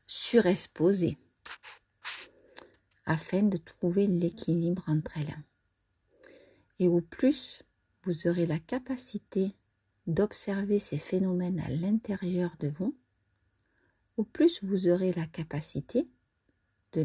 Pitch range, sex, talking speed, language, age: 155-210 Hz, female, 100 wpm, French, 50-69